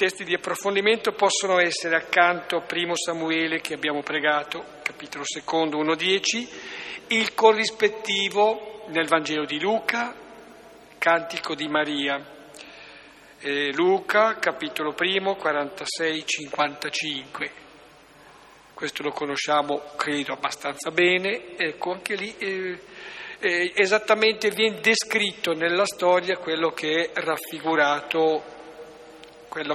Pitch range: 155-195 Hz